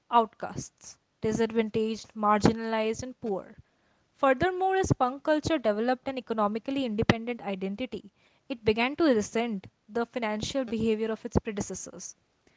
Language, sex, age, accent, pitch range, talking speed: English, female, 20-39, Indian, 220-265 Hz, 115 wpm